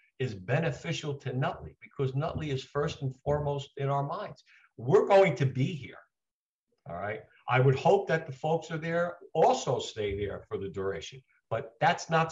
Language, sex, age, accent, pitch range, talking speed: English, male, 50-69, American, 125-145 Hz, 180 wpm